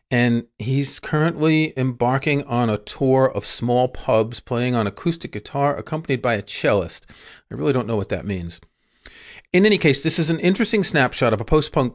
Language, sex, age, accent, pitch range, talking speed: English, male, 40-59, American, 110-145 Hz, 180 wpm